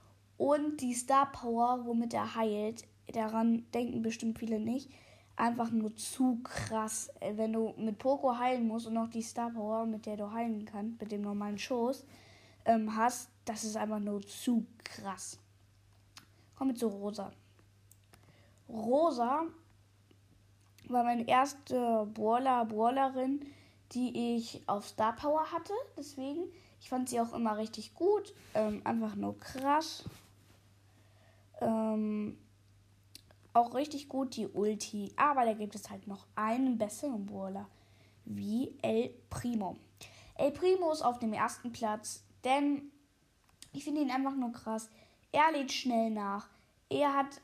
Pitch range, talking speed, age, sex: 205-255 Hz, 135 wpm, 10-29, female